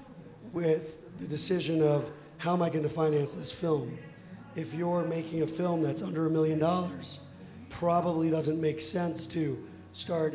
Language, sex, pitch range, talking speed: English, male, 155-170 Hz, 155 wpm